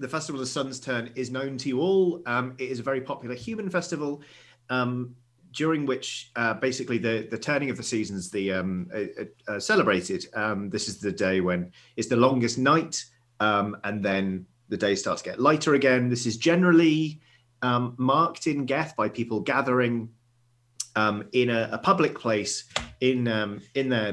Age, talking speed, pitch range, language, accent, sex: 30-49, 190 wpm, 110-135 Hz, English, British, male